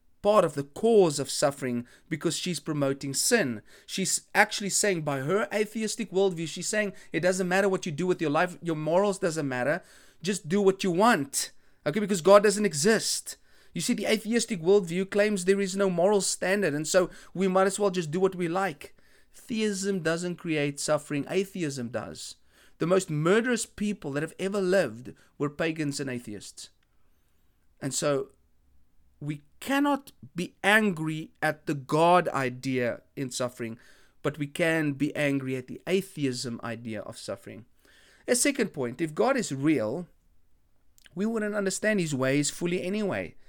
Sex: male